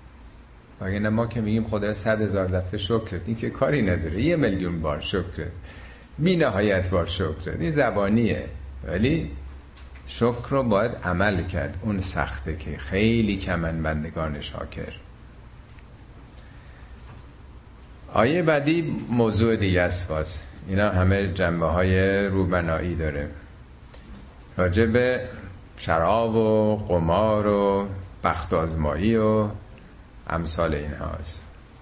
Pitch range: 80-110 Hz